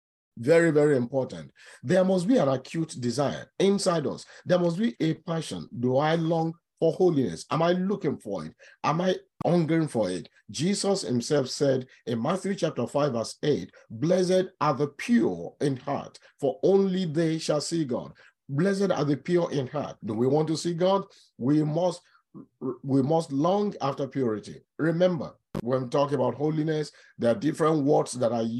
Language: English